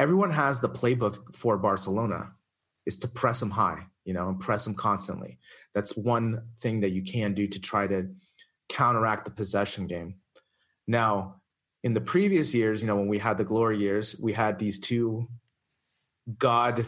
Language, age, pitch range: English, 30-49, 100-120 Hz